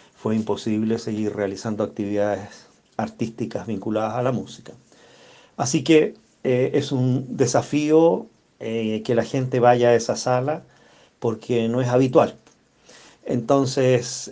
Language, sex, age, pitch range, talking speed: Spanish, male, 40-59, 110-130 Hz, 120 wpm